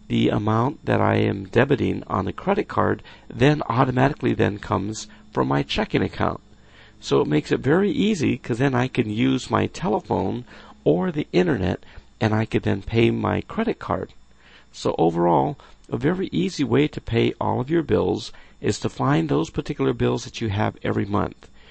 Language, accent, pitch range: English, American, 90-130 Hz